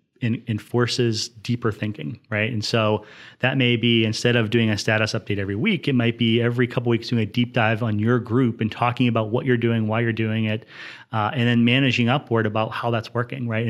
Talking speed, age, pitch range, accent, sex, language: 220 wpm, 30-49, 110-130 Hz, American, male, English